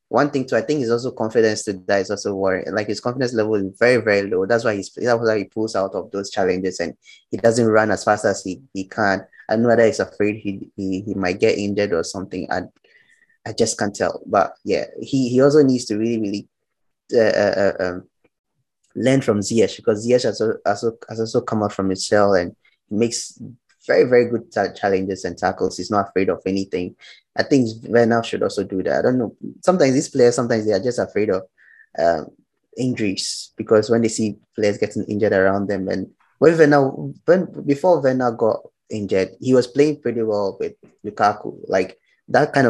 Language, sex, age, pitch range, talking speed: English, male, 20-39, 100-125 Hz, 210 wpm